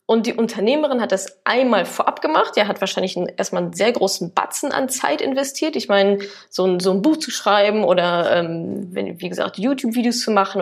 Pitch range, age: 190-245 Hz, 20-39